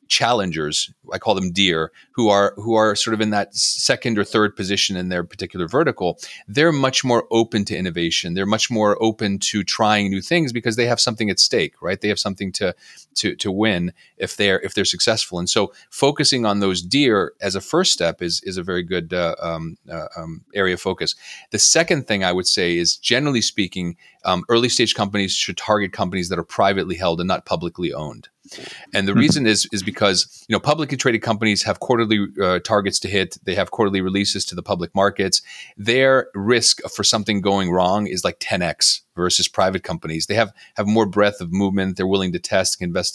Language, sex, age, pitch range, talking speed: English, male, 30-49, 90-115 Hz, 210 wpm